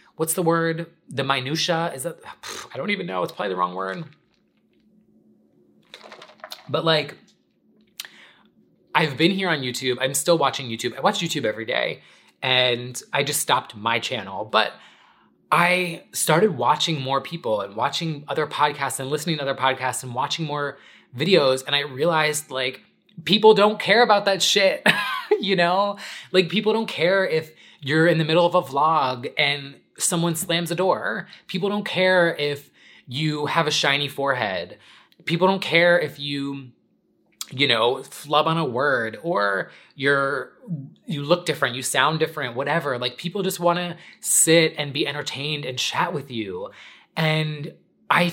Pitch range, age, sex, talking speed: 135-175 Hz, 20-39, male, 160 wpm